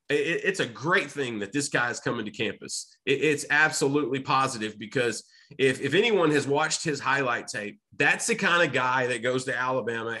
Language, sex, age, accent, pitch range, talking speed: English, male, 30-49, American, 130-170 Hz, 190 wpm